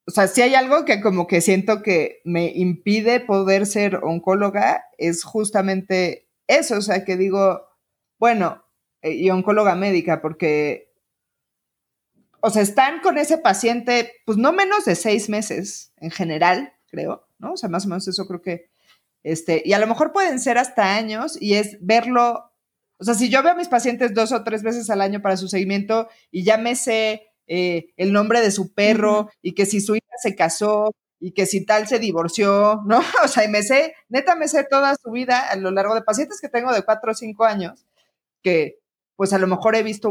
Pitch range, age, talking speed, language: 190-235 Hz, 30-49, 200 wpm, Spanish